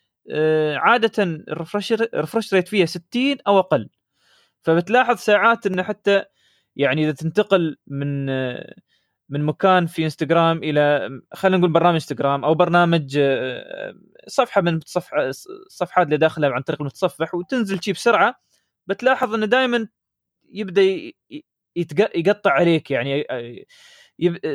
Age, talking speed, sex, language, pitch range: 20-39, 110 wpm, male, Arabic, 145-195 Hz